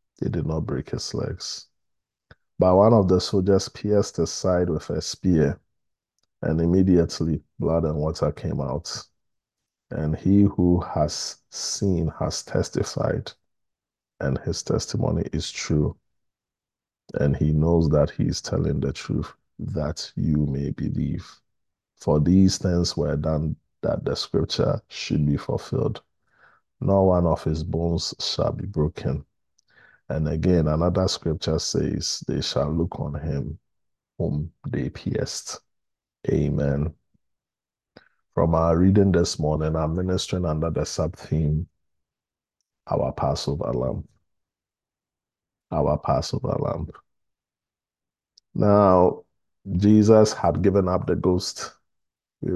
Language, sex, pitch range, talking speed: English, male, 75-95 Hz, 120 wpm